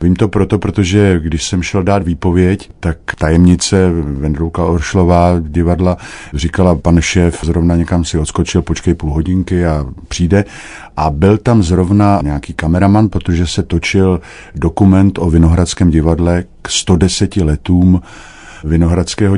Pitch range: 80-100 Hz